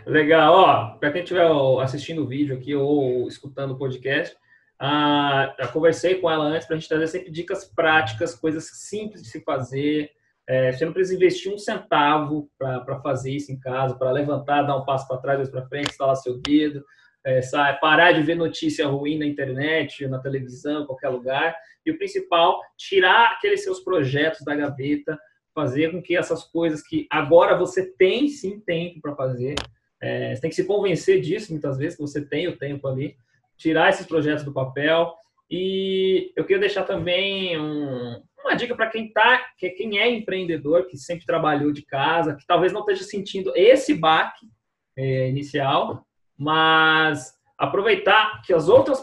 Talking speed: 175 wpm